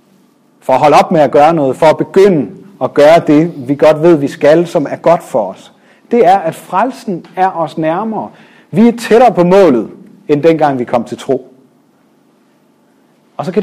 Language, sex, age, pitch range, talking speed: Danish, male, 40-59, 160-255 Hz, 200 wpm